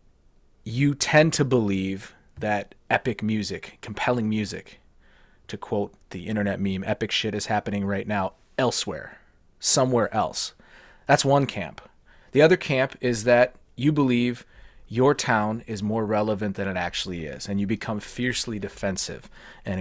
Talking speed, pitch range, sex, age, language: 145 wpm, 100-120 Hz, male, 30-49, English